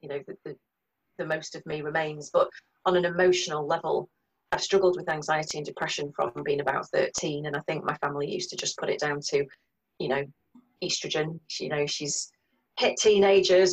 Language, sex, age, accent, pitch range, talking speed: English, female, 30-49, British, 150-190 Hz, 190 wpm